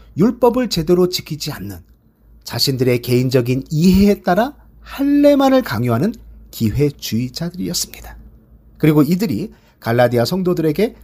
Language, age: Korean, 40-59